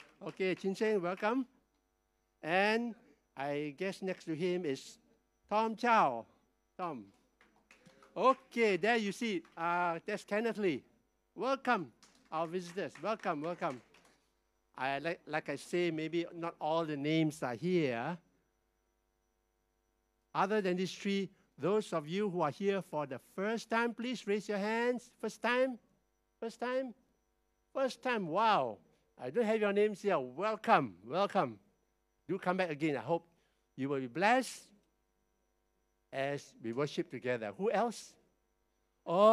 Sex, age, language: male, 60-79, English